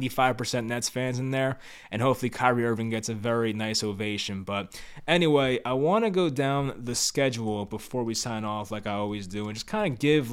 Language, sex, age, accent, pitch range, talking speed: English, male, 20-39, American, 110-130 Hz, 210 wpm